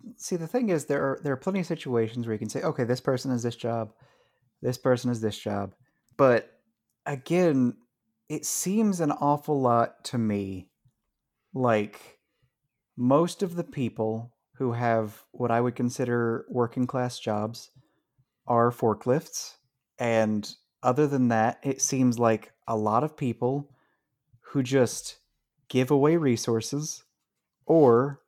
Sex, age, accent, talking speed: male, 30-49, American, 140 wpm